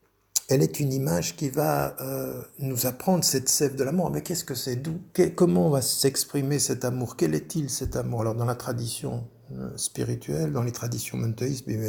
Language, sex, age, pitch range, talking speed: French, male, 60-79, 120-145 Hz, 190 wpm